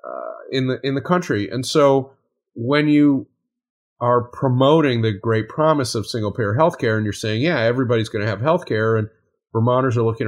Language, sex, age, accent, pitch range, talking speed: English, male, 30-49, American, 105-135 Hz, 175 wpm